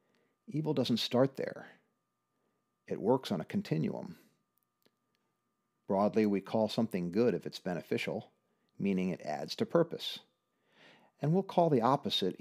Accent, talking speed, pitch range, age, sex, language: American, 130 wpm, 100-135 Hz, 50-69, male, English